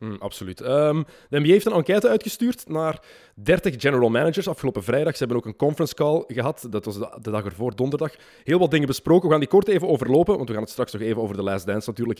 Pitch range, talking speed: 115-160 Hz, 240 wpm